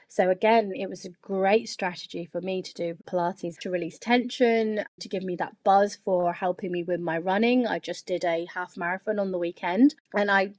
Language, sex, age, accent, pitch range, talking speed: English, female, 20-39, British, 175-215 Hz, 210 wpm